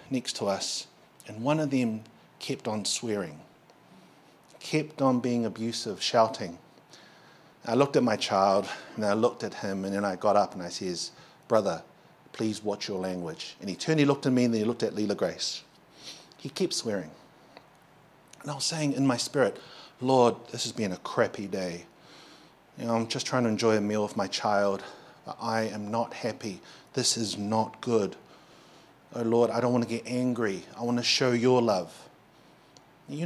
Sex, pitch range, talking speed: male, 110-135 Hz, 190 wpm